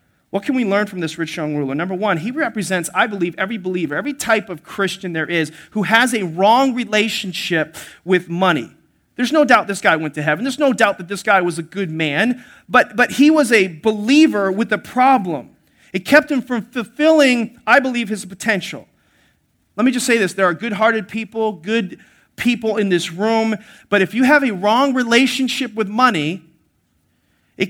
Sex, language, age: male, English, 40-59